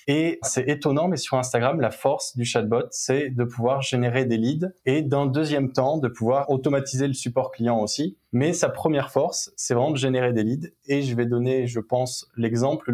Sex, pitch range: male, 120-145 Hz